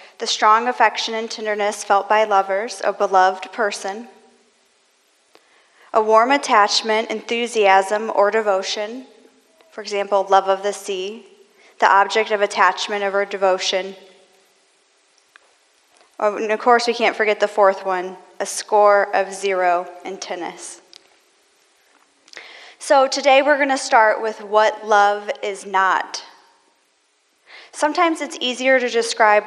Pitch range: 200-240 Hz